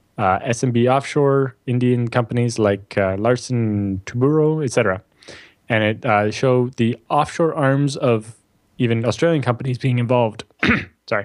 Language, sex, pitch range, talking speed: English, male, 105-130 Hz, 135 wpm